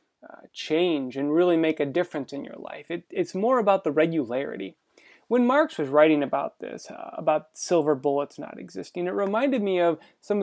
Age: 20-39